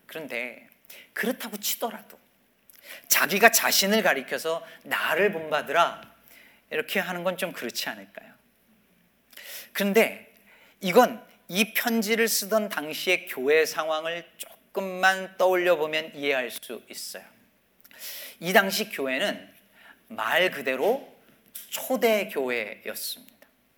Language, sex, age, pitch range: Korean, male, 40-59, 180-225 Hz